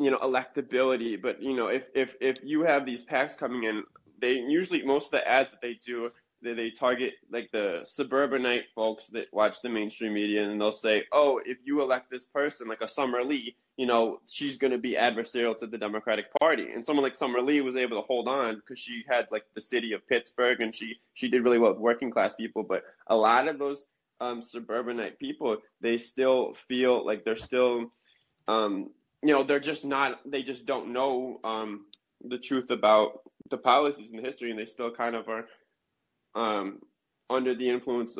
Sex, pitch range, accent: male, 110-130 Hz, American